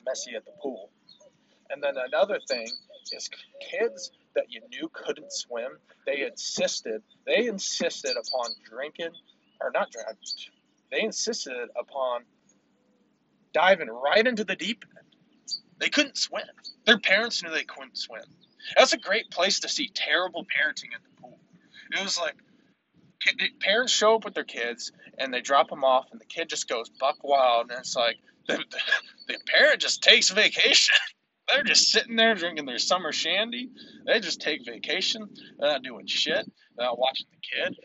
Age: 20-39